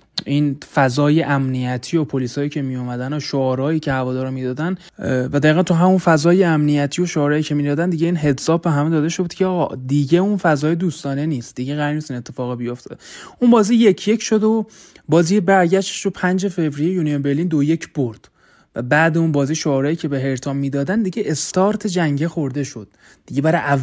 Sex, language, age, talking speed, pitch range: male, Persian, 20-39, 180 wpm, 135-170 Hz